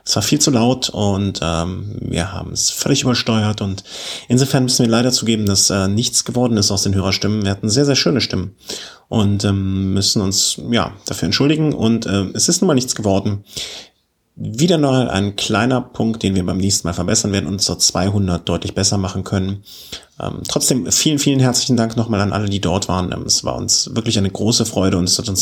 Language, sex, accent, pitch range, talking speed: German, male, German, 100-120 Hz, 210 wpm